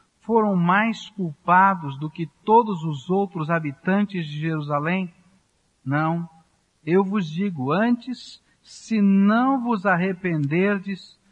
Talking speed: 105 wpm